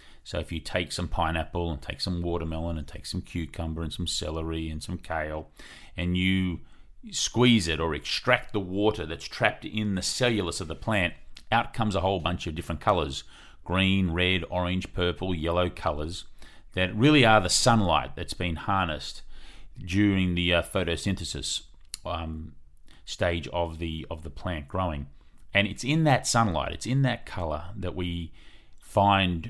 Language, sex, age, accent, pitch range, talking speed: English, male, 30-49, Australian, 80-100 Hz, 165 wpm